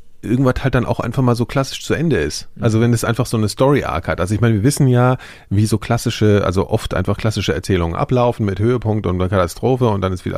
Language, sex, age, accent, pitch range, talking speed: German, male, 40-59, German, 105-145 Hz, 250 wpm